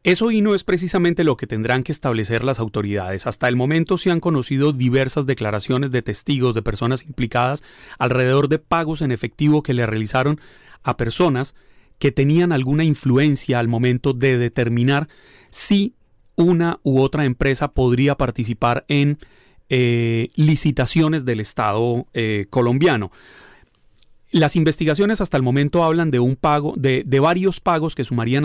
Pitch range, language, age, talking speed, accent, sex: 120-150 Hz, Spanish, 30-49, 150 wpm, Colombian, male